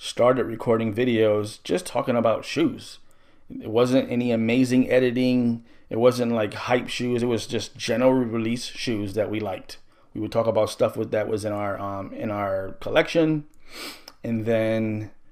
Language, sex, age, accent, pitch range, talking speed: English, male, 20-39, American, 105-125 Hz, 165 wpm